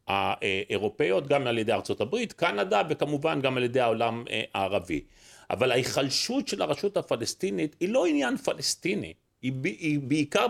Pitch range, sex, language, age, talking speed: 140-200 Hz, male, Hebrew, 40-59, 145 wpm